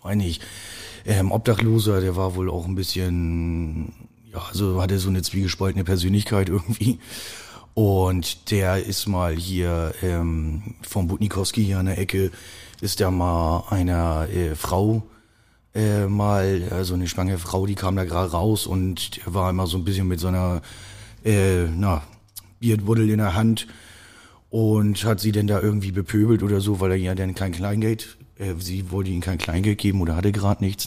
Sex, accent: male, German